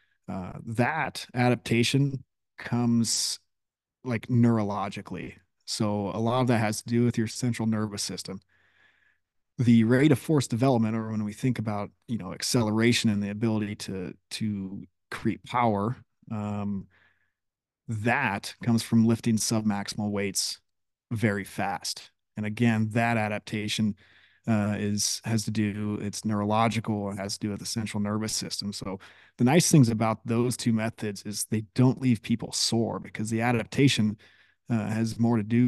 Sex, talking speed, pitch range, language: male, 150 wpm, 105-115 Hz, English